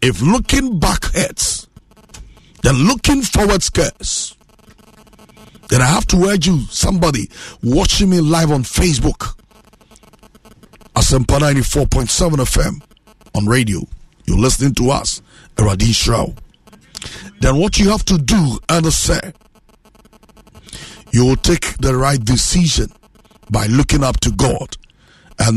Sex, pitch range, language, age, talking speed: male, 115-155 Hz, English, 60-79, 115 wpm